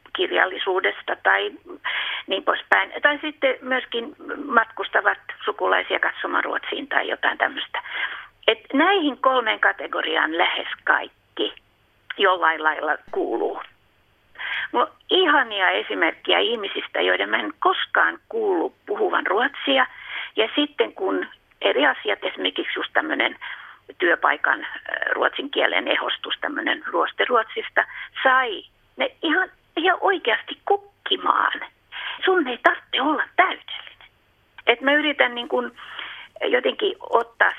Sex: female